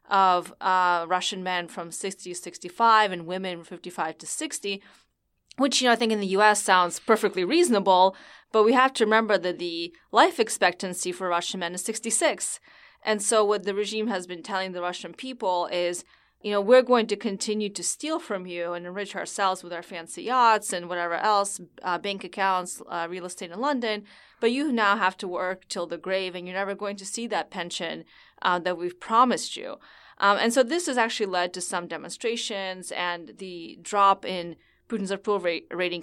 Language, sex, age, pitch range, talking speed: English, female, 20-39, 180-220 Hz, 200 wpm